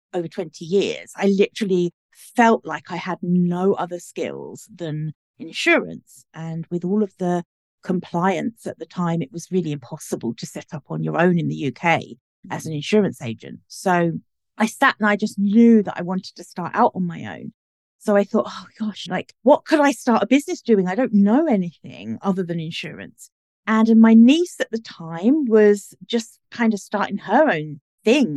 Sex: female